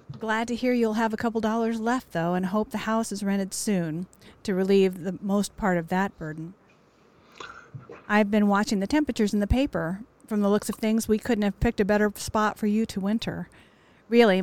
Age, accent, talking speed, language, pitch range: 50-69, American, 210 wpm, English, 180-215 Hz